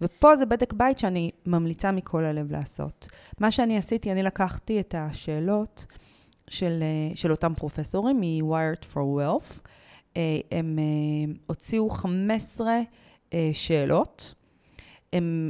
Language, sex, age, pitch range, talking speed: Hebrew, female, 30-49, 160-210 Hz, 110 wpm